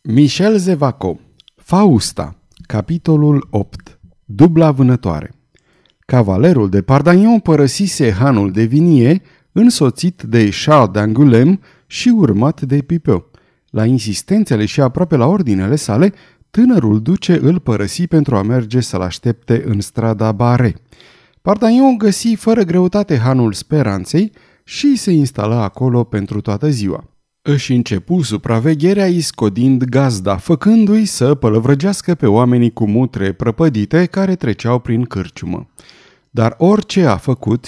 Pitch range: 115-170 Hz